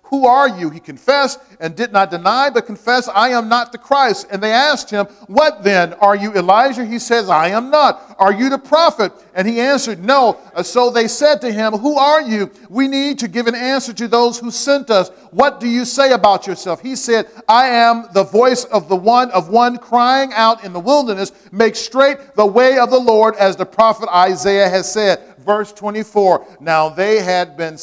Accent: American